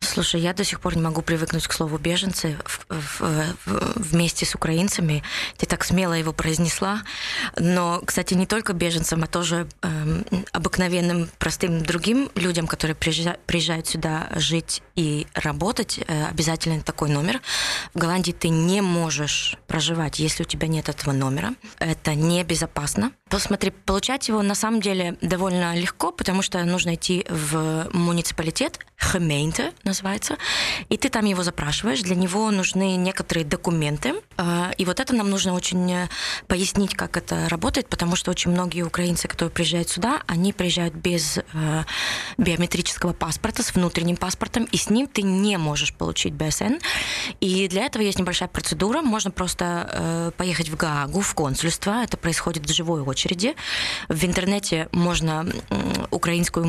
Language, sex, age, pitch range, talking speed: Ukrainian, female, 20-39, 165-195 Hz, 145 wpm